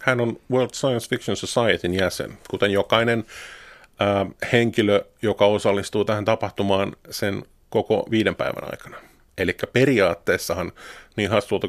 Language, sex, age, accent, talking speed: Finnish, male, 30-49, native, 120 wpm